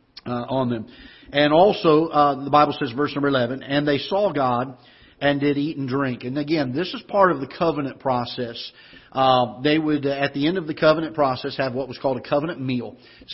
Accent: American